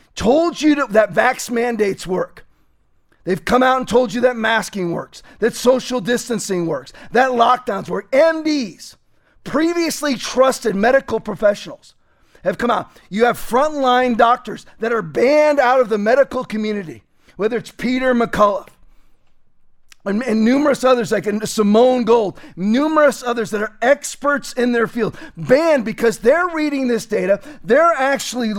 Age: 40-59